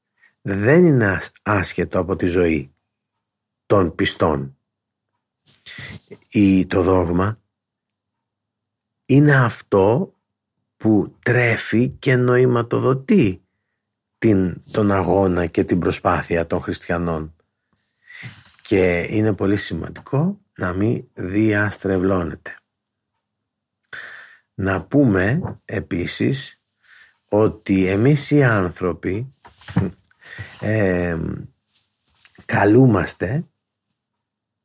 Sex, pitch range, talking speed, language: male, 95-120 Hz, 70 wpm, Greek